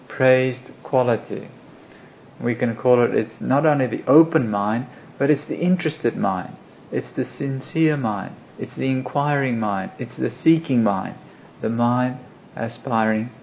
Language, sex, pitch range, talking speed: English, male, 115-150 Hz, 145 wpm